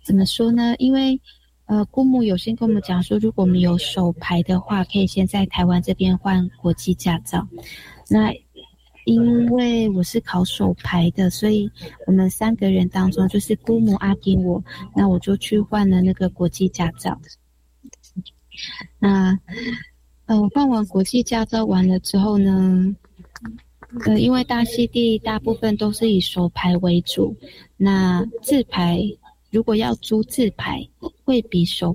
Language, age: Chinese, 20-39